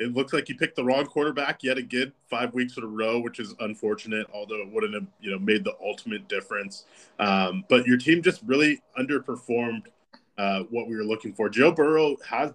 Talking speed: 200 wpm